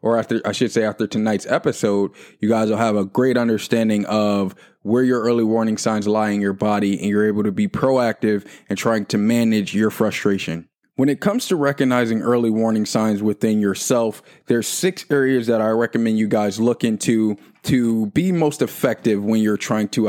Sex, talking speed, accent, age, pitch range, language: male, 195 wpm, American, 20-39, 105-125 Hz, English